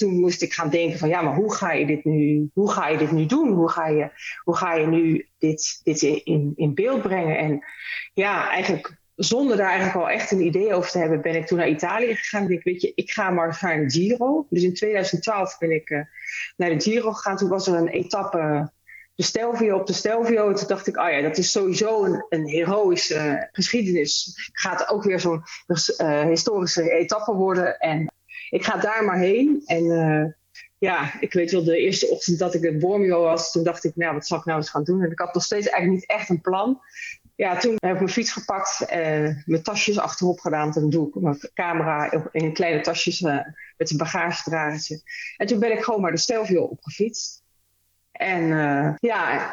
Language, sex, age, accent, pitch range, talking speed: Dutch, female, 30-49, Dutch, 160-210 Hz, 220 wpm